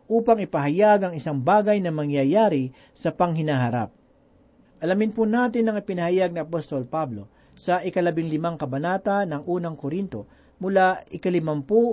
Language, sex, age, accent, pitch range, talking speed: Filipino, male, 40-59, native, 150-210 Hz, 130 wpm